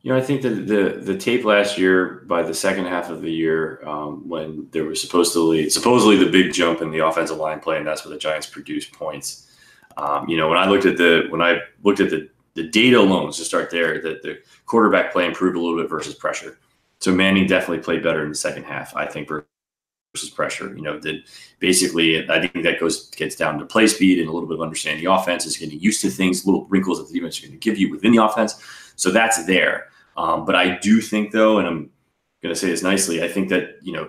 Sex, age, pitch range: male, 30-49, 80-100 Hz